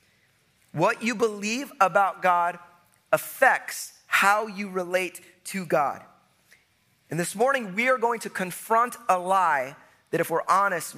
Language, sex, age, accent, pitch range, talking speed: English, male, 30-49, American, 165-210 Hz, 135 wpm